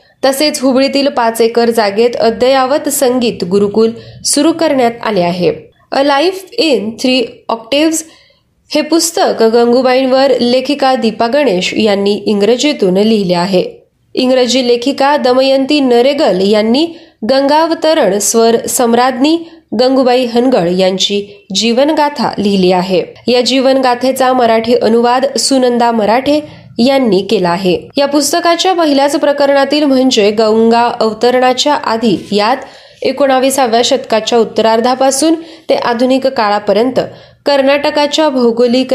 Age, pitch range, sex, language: 20-39, 220-280 Hz, female, Marathi